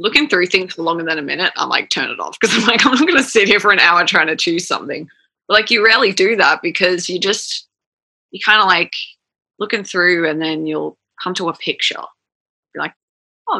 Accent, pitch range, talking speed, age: Australian, 165-220 Hz, 235 wpm, 20-39